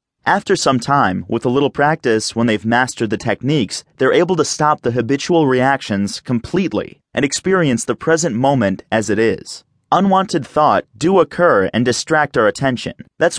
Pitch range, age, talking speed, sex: 115-160 Hz, 30-49, 165 wpm, male